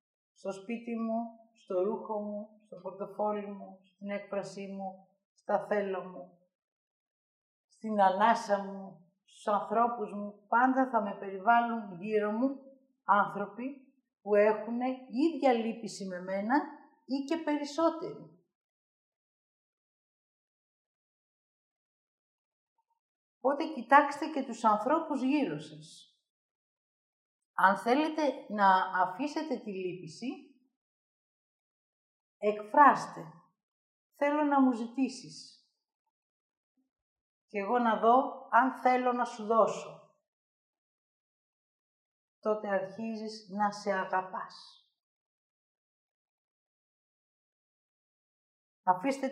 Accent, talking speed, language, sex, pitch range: native, 85 wpm, Greek, female, 200-270 Hz